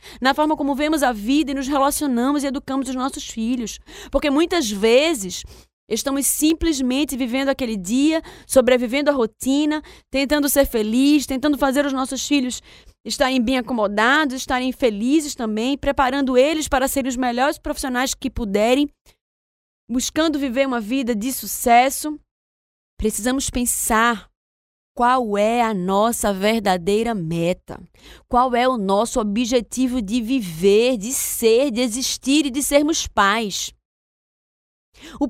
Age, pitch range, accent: 20-39, 245-305 Hz, Brazilian